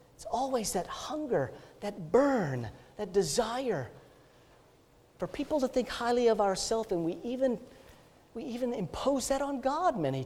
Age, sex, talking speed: 40-59, male, 145 wpm